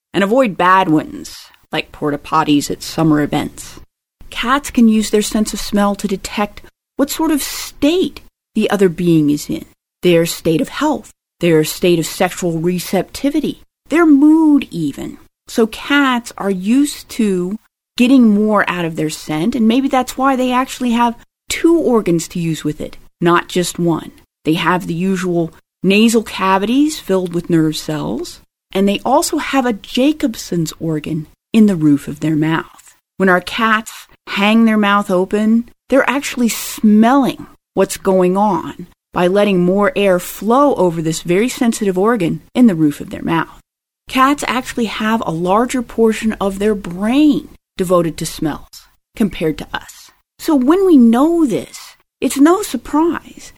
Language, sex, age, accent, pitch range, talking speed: English, female, 30-49, American, 175-255 Hz, 160 wpm